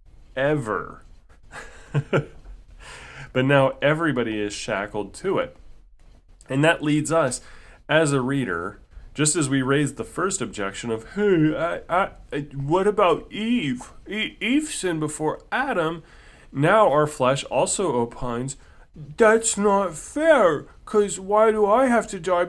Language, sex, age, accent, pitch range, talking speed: English, male, 30-49, American, 110-160 Hz, 125 wpm